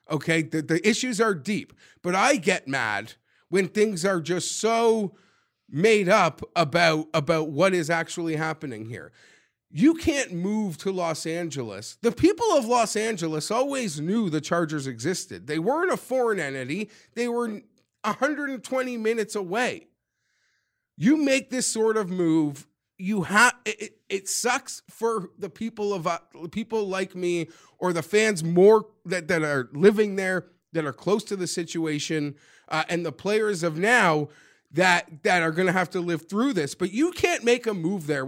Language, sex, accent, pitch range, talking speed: English, male, American, 165-220 Hz, 165 wpm